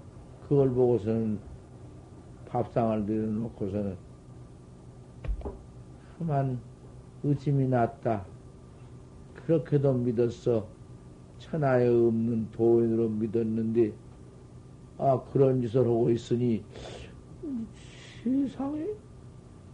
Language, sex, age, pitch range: Korean, male, 50-69, 120-170 Hz